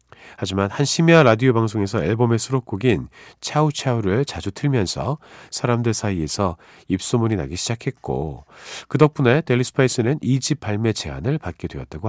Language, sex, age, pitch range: Korean, male, 40-59, 95-140 Hz